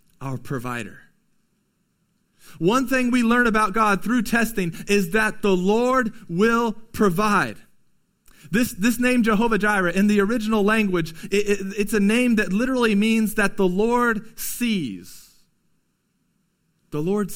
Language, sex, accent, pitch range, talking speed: English, male, American, 195-235 Hz, 135 wpm